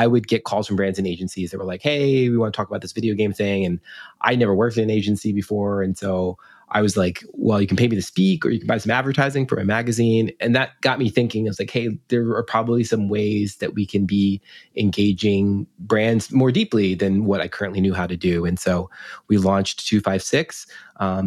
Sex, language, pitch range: male, English, 95-115 Hz